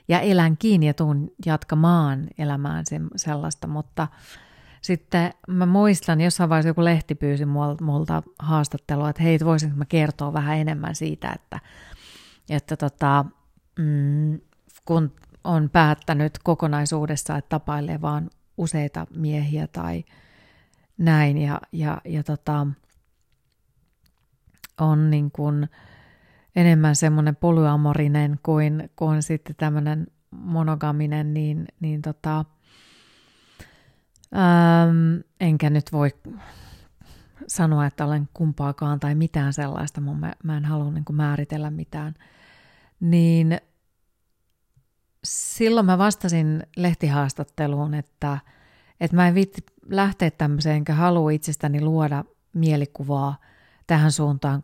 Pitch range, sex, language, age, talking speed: 145-165 Hz, female, Finnish, 30-49, 100 wpm